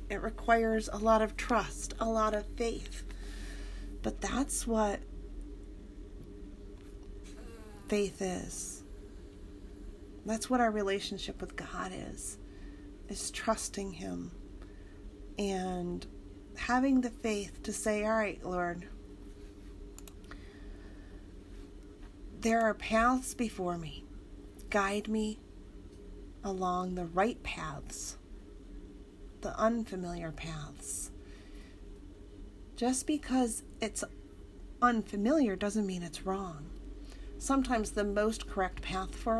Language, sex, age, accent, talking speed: English, female, 30-49, American, 95 wpm